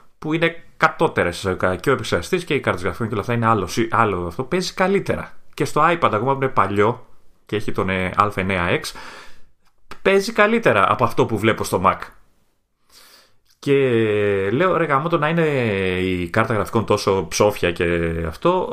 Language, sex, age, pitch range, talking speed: Greek, male, 30-49, 100-155 Hz, 165 wpm